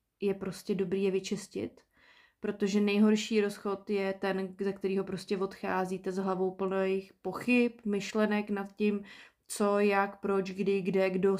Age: 20-39